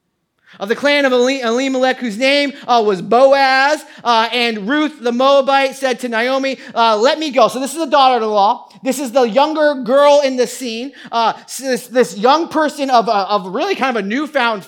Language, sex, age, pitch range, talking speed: English, male, 30-49, 190-300 Hz, 195 wpm